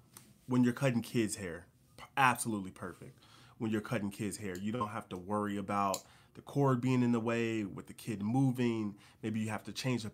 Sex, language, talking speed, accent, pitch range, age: male, English, 200 wpm, American, 110-130 Hz, 30-49